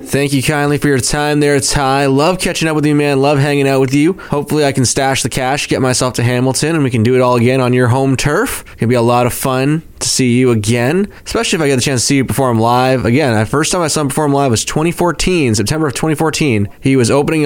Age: 20-39